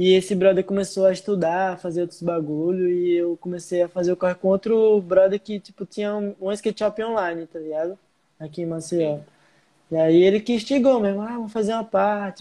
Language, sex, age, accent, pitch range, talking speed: Portuguese, male, 20-39, Brazilian, 180-210 Hz, 210 wpm